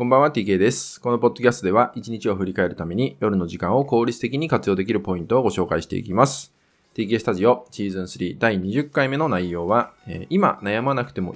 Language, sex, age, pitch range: Japanese, male, 20-39, 95-145 Hz